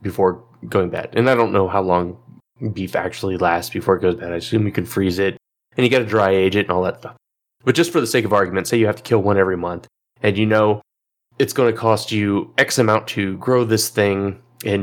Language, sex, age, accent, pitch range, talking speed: English, male, 20-39, American, 95-115 Hz, 250 wpm